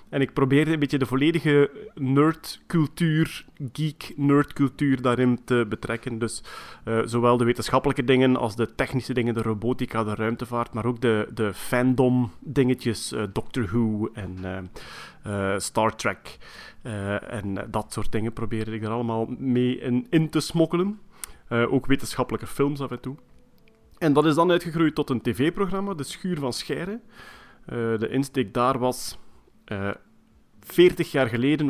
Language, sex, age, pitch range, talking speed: Dutch, male, 30-49, 110-140 Hz, 155 wpm